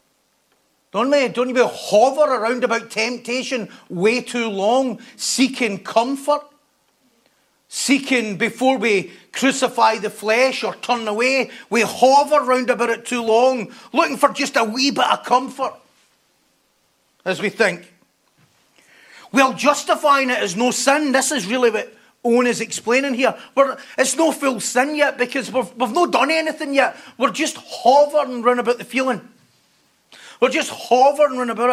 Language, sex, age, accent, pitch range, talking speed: English, male, 40-59, British, 215-270 Hz, 150 wpm